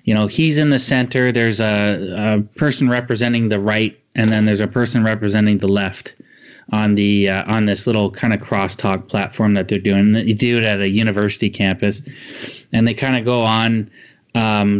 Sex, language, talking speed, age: male, English, 195 wpm, 30-49